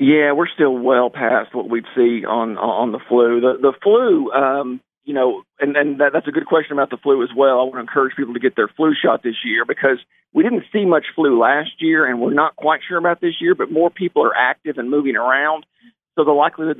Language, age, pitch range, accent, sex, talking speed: English, 50-69, 130-175 Hz, American, male, 245 wpm